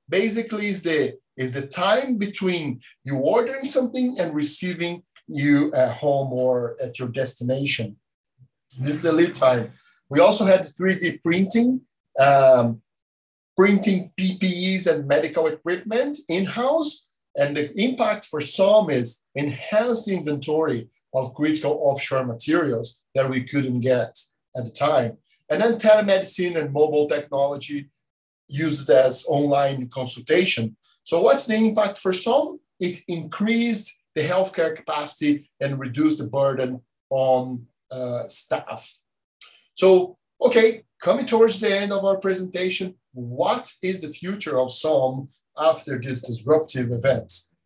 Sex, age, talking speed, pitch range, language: male, 50-69, 130 wpm, 130-200 Hz, English